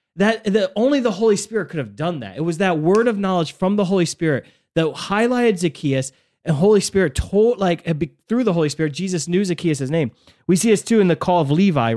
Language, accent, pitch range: English, American, 155-205 Hz